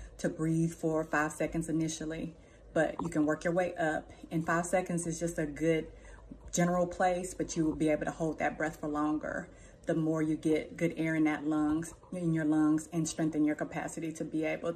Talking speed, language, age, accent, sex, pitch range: 210 wpm, English, 30-49, American, female, 155-170 Hz